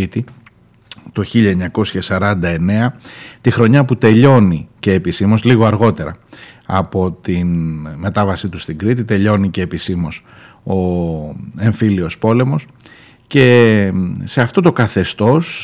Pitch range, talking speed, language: 95-125 Hz, 105 wpm, Greek